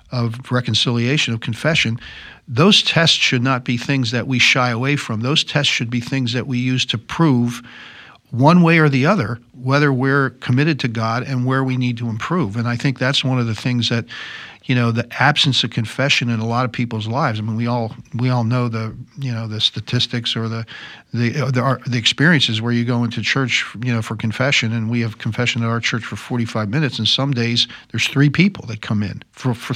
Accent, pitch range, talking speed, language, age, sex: American, 115-135 Hz, 225 wpm, English, 50-69, male